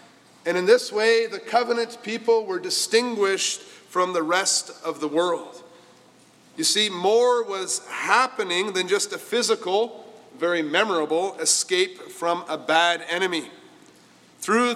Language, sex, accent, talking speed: English, male, American, 130 wpm